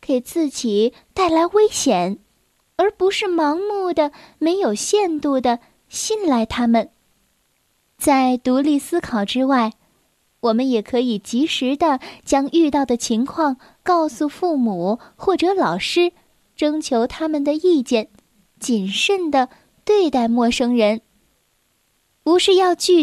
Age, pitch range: 10-29, 230-320 Hz